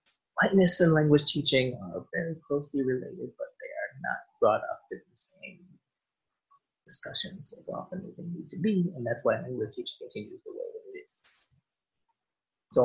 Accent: American